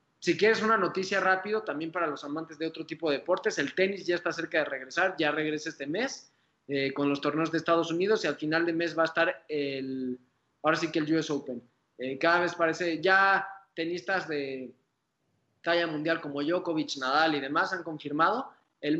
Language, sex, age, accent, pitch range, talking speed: Spanish, male, 20-39, Mexican, 145-180 Hz, 200 wpm